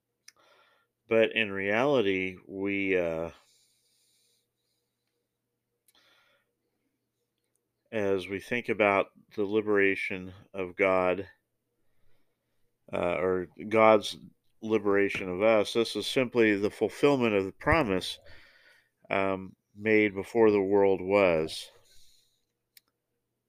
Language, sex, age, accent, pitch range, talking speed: English, male, 40-59, American, 95-115 Hz, 85 wpm